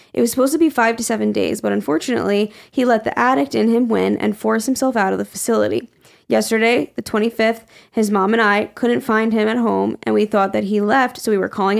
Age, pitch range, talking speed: 10-29, 205-240 Hz, 240 wpm